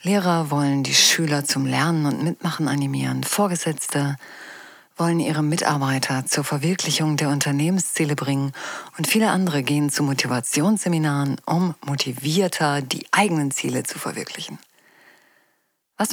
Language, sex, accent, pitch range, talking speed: German, female, German, 145-190 Hz, 120 wpm